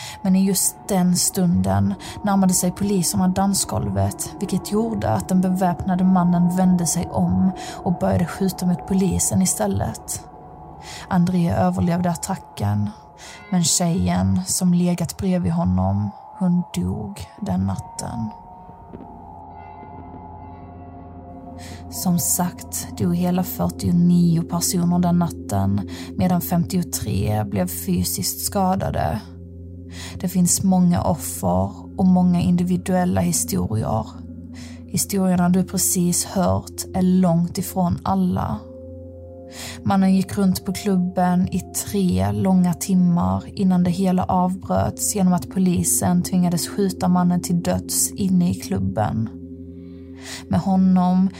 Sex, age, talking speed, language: female, 20-39, 110 wpm, Swedish